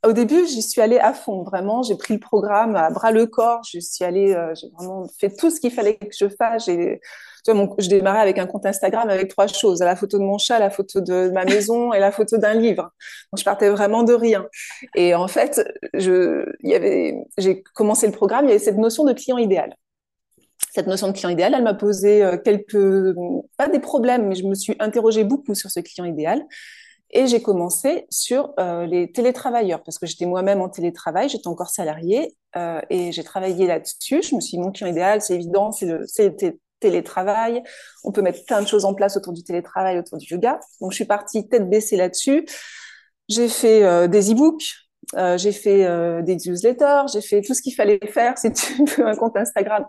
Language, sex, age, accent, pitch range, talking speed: French, female, 30-49, French, 190-240 Hz, 220 wpm